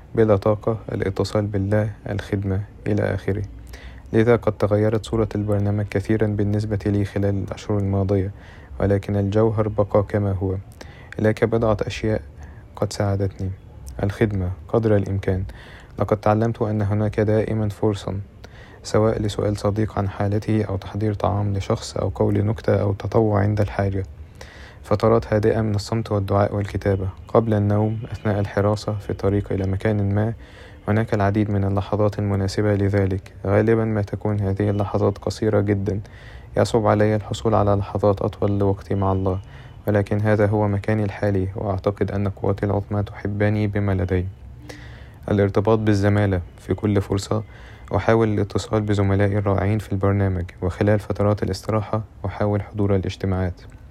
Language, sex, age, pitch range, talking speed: English, male, 20-39, 100-105 Hz, 130 wpm